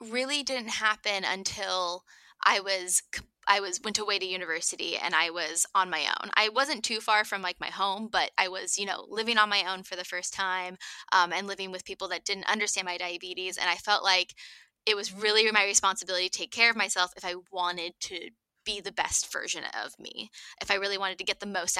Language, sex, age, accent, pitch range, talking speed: English, female, 10-29, American, 180-210 Hz, 225 wpm